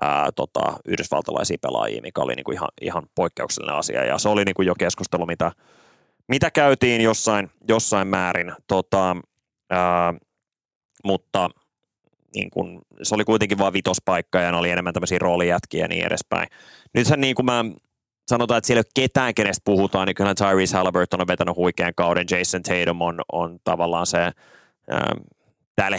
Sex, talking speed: male, 125 wpm